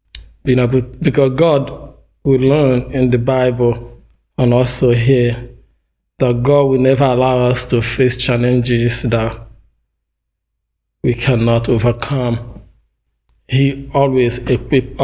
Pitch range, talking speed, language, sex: 120-140 Hz, 110 wpm, English, male